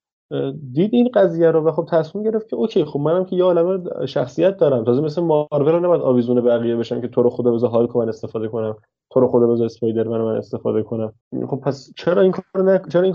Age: 20-39